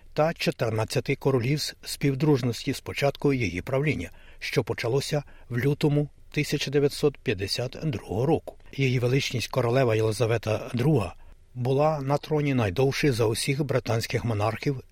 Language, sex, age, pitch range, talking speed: Ukrainian, male, 60-79, 115-145 Hz, 110 wpm